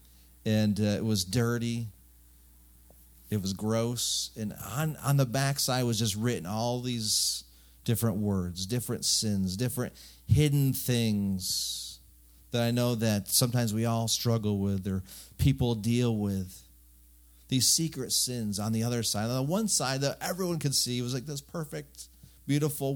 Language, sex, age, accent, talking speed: English, male, 40-59, American, 155 wpm